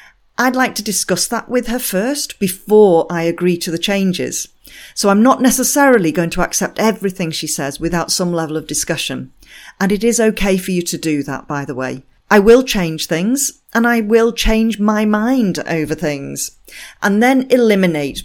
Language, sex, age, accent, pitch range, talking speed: English, female, 40-59, British, 160-220 Hz, 185 wpm